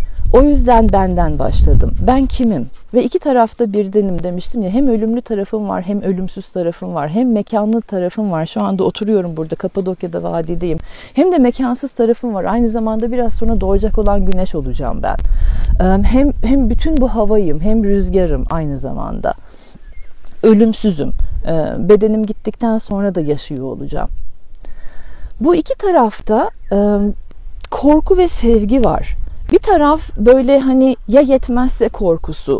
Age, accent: 40-59, native